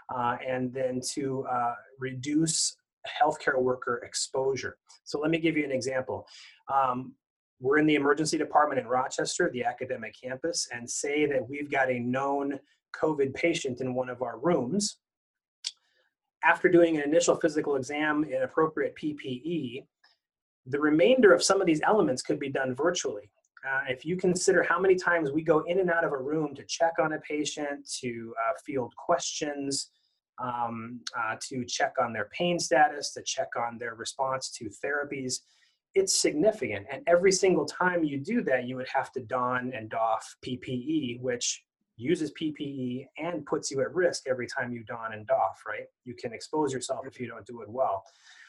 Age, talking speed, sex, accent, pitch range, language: 30-49, 175 wpm, male, American, 130-165 Hz, English